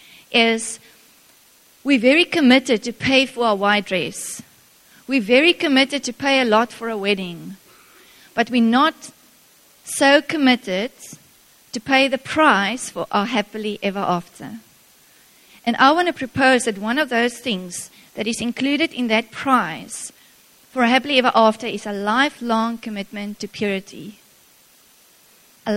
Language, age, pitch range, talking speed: English, 30-49, 215-260 Hz, 145 wpm